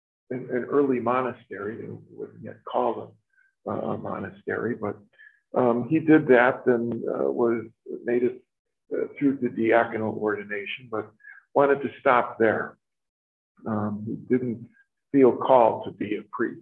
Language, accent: English, American